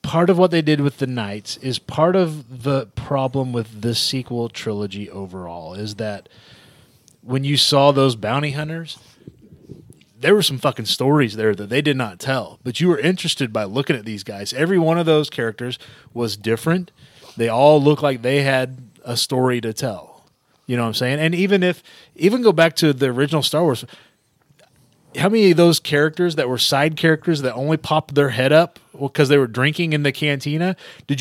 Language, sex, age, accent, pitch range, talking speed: English, male, 30-49, American, 120-155 Hz, 195 wpm